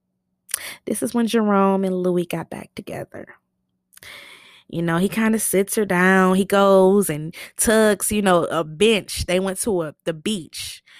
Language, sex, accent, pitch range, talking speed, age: English, female, American, 170-220 Hz, 165 wpm, 20-39